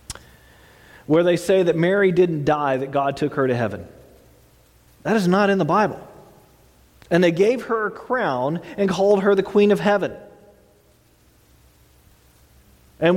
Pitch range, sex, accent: 155-200 Hz, male, American